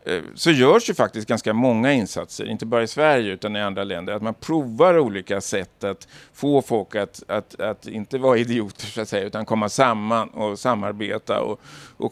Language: Swedish